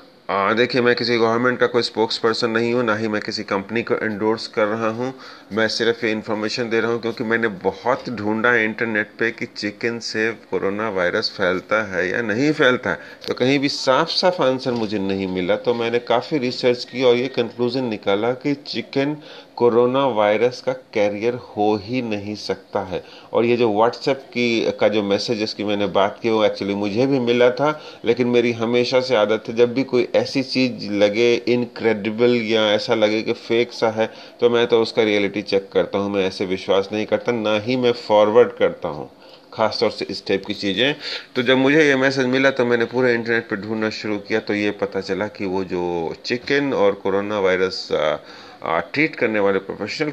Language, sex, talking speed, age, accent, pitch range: Hindi, male, 195 wpm, 30-49, native, 105-125 Hz